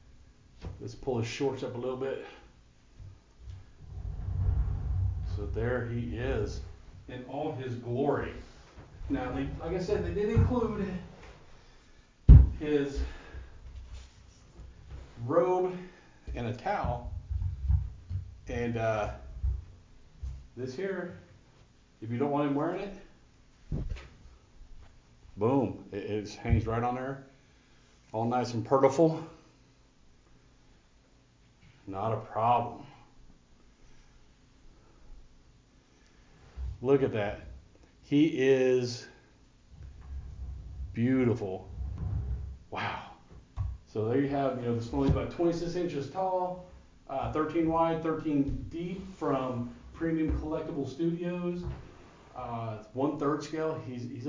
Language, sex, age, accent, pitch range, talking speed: English, male, 50-69, American, 95-140 Hz, 95 wpm